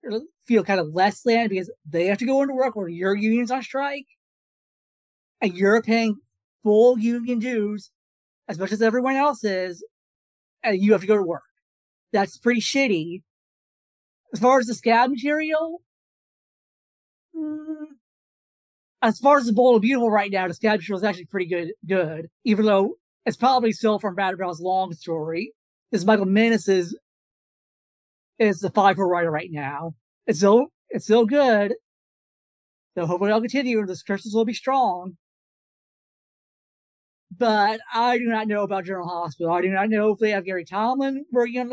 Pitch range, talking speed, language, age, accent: 185-235 Hz, 170 wpm, English, 30-49, American